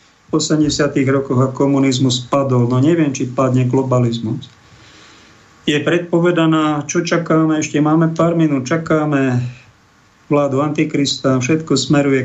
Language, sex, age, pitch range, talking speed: Slovak, male, 50-69, 125-155 Hz, 120 wpm